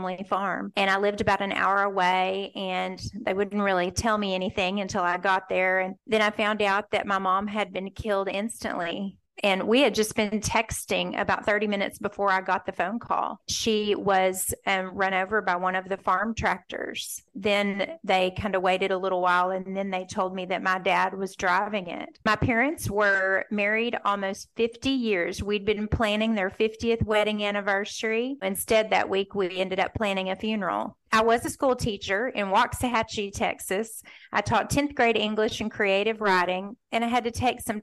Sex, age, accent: female, 30-49, American